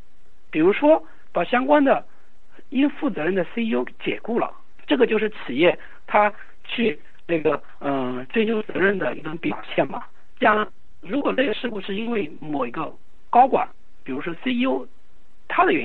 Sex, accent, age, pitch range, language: male, native, 50-69, 180-280 Hz, Chinese